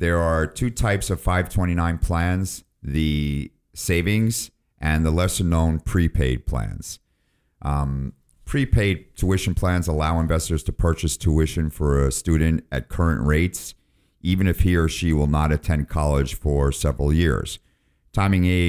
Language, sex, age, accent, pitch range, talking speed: English, male, 50-69, American, 75-90 Hz, 140 wpm